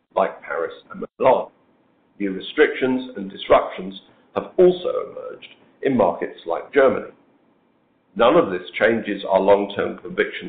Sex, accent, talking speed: male, British, 125 wpm